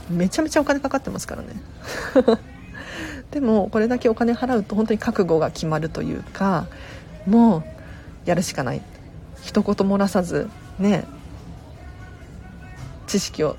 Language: Japanese